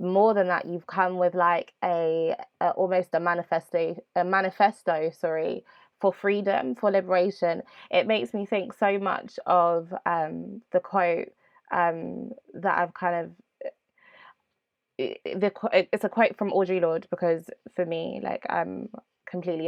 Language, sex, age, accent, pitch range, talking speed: English, female, 20-39, British, 170-185 Hz, 140 wpm